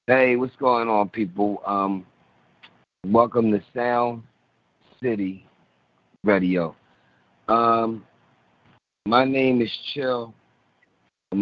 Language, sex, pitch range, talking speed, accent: English, male, 95-115 Hz, 90 wpm, American